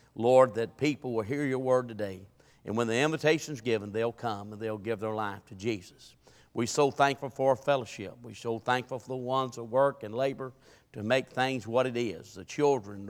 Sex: male